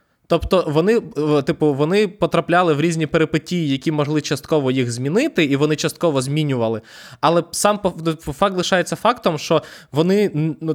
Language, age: Ukrainian, 20-39